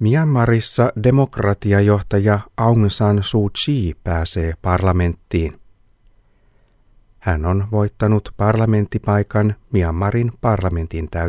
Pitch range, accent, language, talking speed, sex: 95-115 Hz, native, Finnish, 75 wpm, male